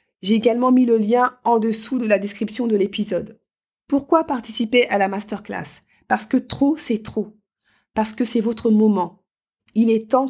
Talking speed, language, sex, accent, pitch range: 175 wpm, French, female, French, 200-240 Hz